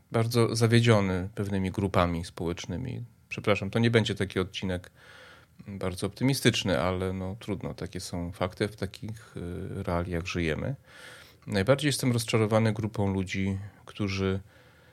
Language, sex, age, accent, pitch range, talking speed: Polish, male, 30-49, native, 95-110 Hz, 115 wpm